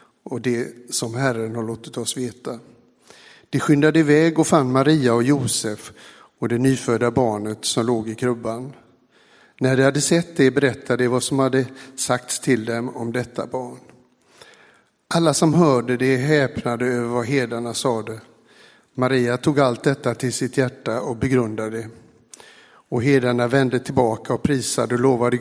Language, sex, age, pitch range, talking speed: Swedish, male, 60-79, 120-140 Hz, 160 wpm